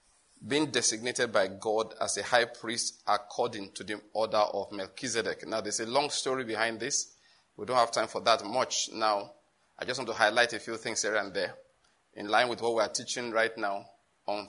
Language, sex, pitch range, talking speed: English, male, 110-135 Hz, 205 wpm